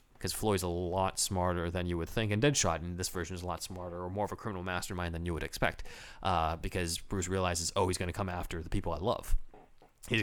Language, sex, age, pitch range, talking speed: English, male, 20-39, 90-105 Hz, 250 wpm